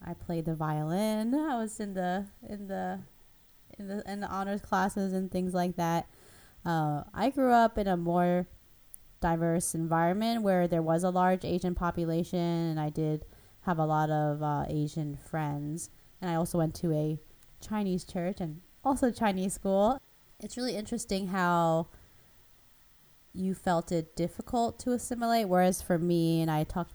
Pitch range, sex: 155-190 Hz, female